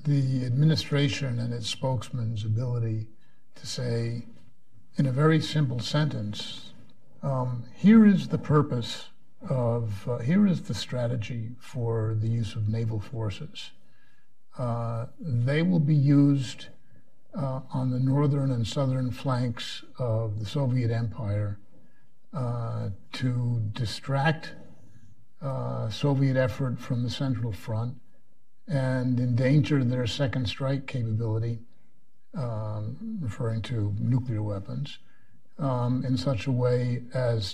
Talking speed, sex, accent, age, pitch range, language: 115 wpm, male, American, 60-79, 115-140 Hz, English